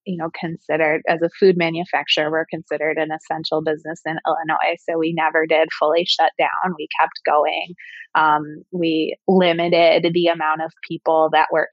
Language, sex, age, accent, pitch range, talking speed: English, female, 20-39, American, 160-190 Hz, 170 wpm